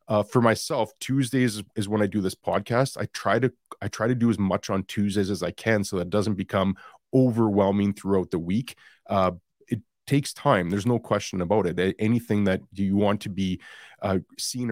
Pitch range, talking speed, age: 95-115 Hz, 205 wpm, 30-49